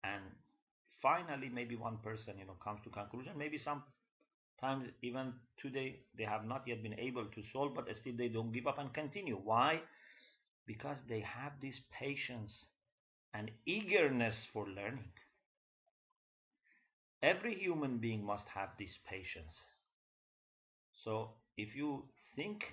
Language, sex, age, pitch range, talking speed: English, male, 40-59, 105-150 Hz, 135 wpm